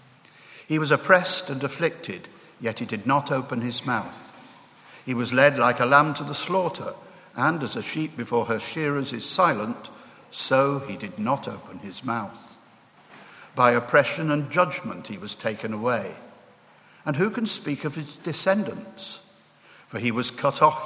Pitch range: 125-155 Hz